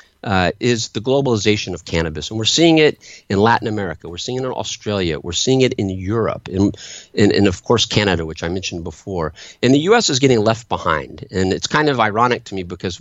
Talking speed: 215 wpm